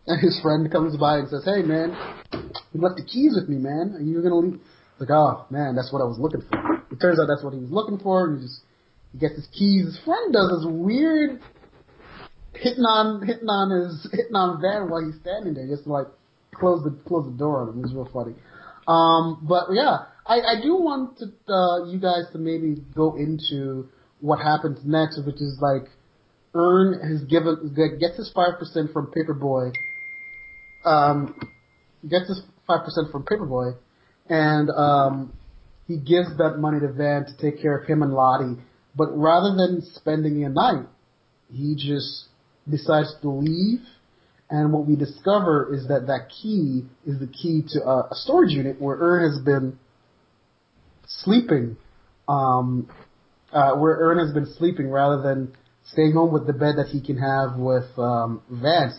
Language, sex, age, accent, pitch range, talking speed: English, male, 30-49, American, 140-175 Hz, 185 wpm